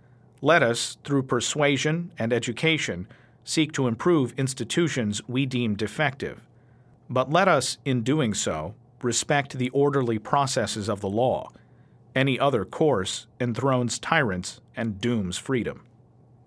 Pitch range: 120-140 Hz